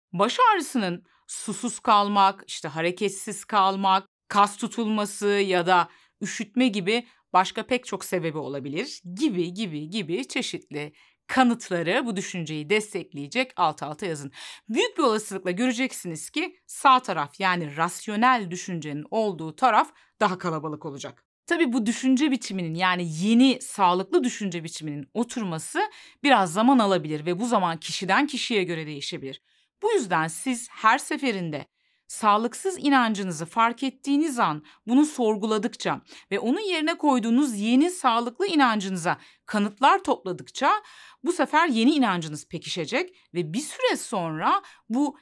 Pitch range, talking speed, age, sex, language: 175-255 Hz, 125 wpm, 40-59, female, Turkish